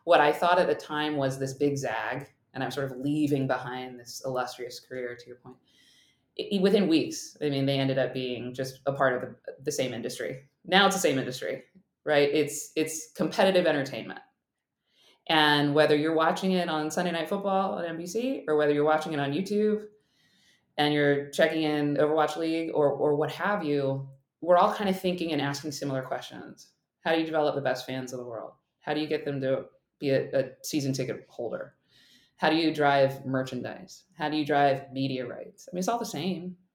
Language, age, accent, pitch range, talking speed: English, 20-39, American, 135-160 Hz, 205 wpm